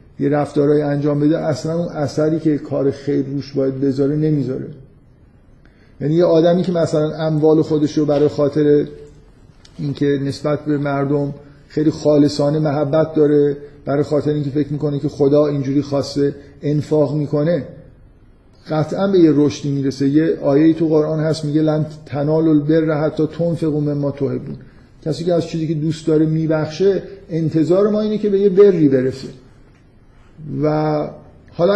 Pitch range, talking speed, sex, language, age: 140-160 Hz, 155 wpm, male, Persian, 50-69